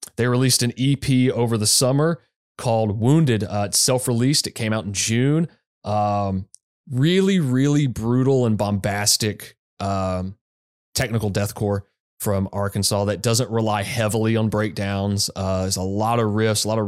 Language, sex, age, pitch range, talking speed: English, male, 30-49, 100-120 Hz, 155 wpm